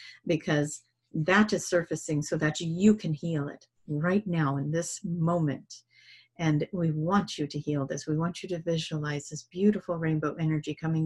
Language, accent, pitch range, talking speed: English, American, 155-210 Hz, 175 wpm